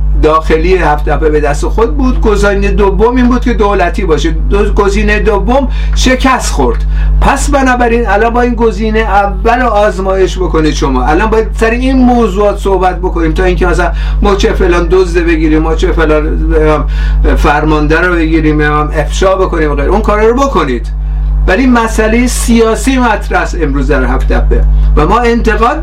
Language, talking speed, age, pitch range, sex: Persian, 160 wpm, 50-69, 150-210 Hz, male